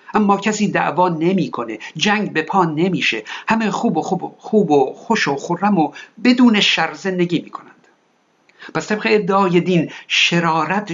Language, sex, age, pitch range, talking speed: Persian, male, 60-79, 145-190 Hz, 155 wpm